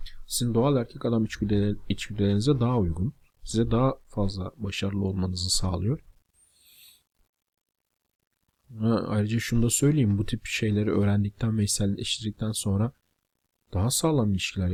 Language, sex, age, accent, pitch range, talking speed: Turkish, male, 40-59, native, 95-115 Hz, 105 wpm